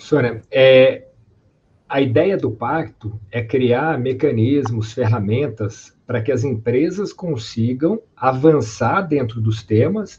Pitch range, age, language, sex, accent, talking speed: 120-160 Hz, 50-69, Portuguese, male, Brazilian, 110 wpm